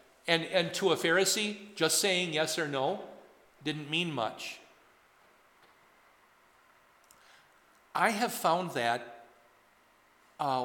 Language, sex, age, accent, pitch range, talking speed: English, male, 50-69, American, 150-200 Hz, 100 wpm